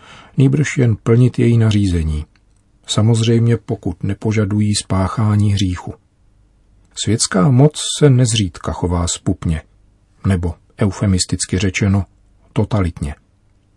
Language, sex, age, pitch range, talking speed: Czech, male, 40-59, 95-115 Hz, 85 wpm